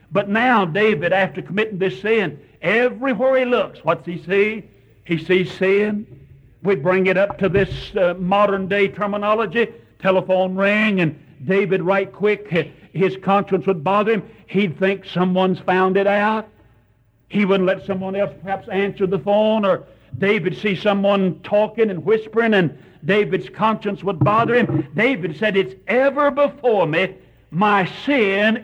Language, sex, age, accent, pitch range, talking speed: English, male, 60-79, American, 165-205 Hz, 150 wpm